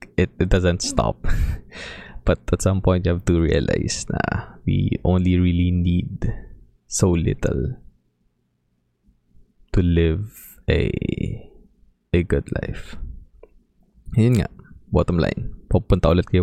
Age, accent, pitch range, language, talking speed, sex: 20-39, Filipino, 80-95 Hz, English, 115 wpm, male